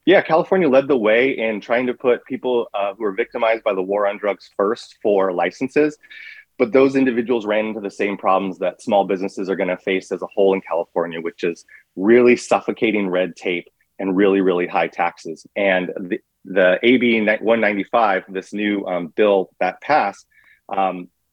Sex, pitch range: male, 95-130 Hz